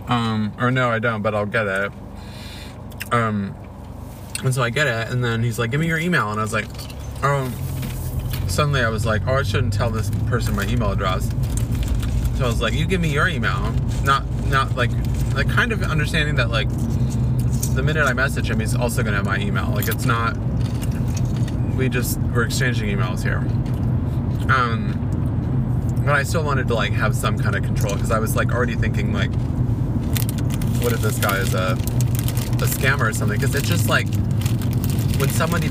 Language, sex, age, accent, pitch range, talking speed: English, male, 20-39, American, 110-125 Hz, 190 wpm